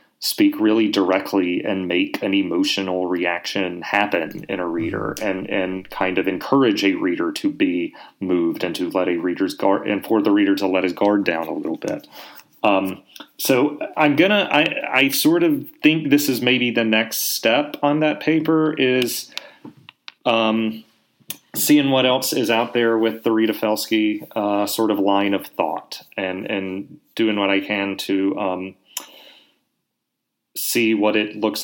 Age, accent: 30-49, American